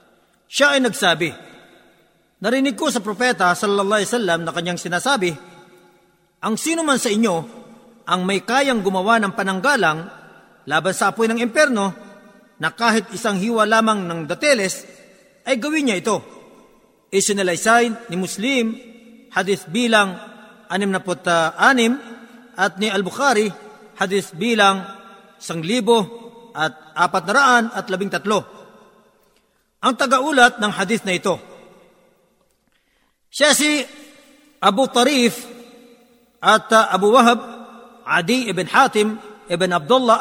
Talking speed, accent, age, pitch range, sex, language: 110 wpm, native, 40-59, 190-245 Hz, male, Filipino